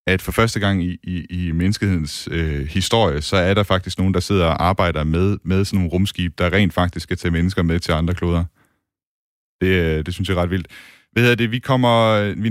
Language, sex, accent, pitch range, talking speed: Danish, male, native, 90-110 Hz, 225 wpm